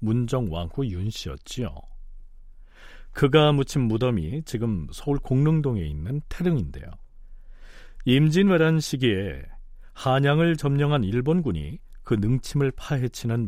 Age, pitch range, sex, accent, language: 40-59, 105-155 Hz, male, native, Korean